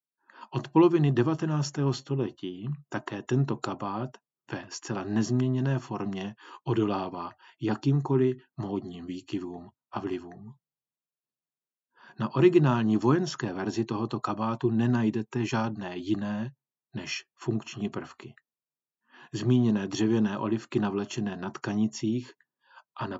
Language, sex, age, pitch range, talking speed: Czech, male, 40-59, 105-130 Hz, 95 wpm